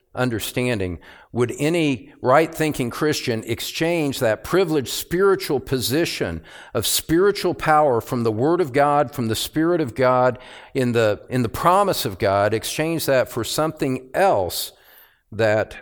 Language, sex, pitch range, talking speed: English, male, 120-150 Hz, 135 wpm